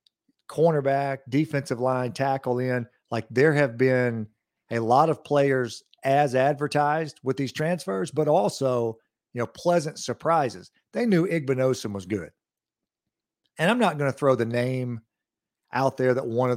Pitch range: 110-140 Hz